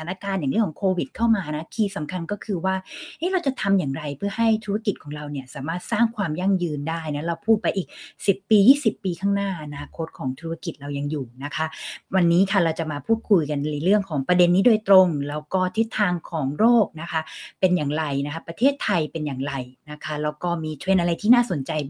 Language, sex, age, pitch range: Thai, female, 20-39, 150-200 Hz